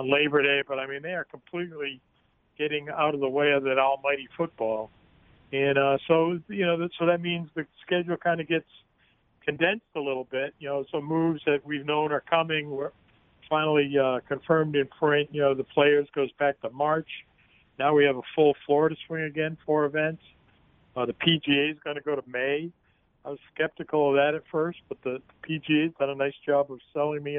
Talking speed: 210 wpm